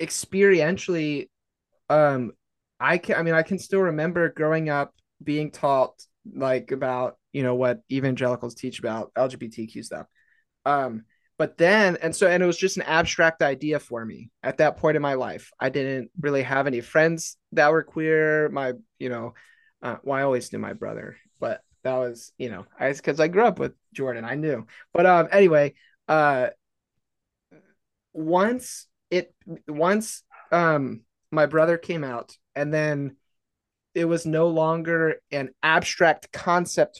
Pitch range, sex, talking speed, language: 135-165 Hz, male, 160 wpm, English